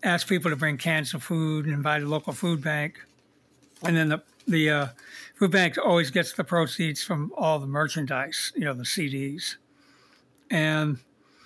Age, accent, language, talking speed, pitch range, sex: 60-79, American, English, 175 wpm, 150-180 Hz, male